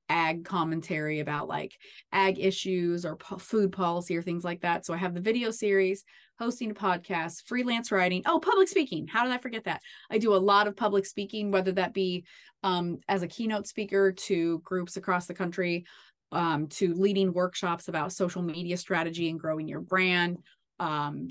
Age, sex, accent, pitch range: 30-49, female, American, 160-185 Hz